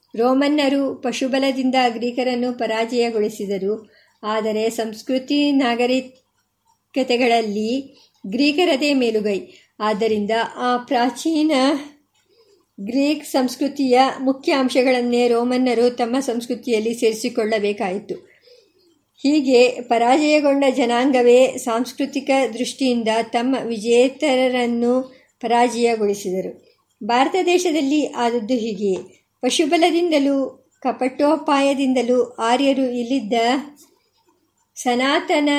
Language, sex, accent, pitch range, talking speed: Kannada, male, native, 235-275 Hz, 60 wpm